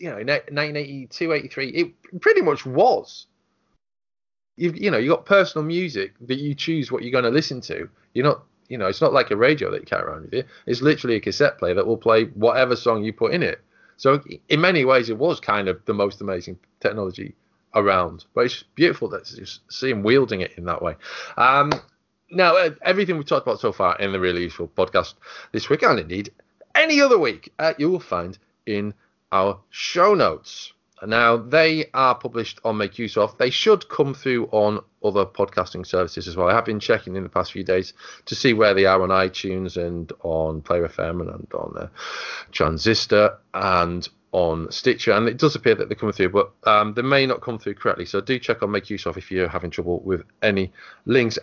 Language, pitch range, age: English, 95-145 Hz, 20-39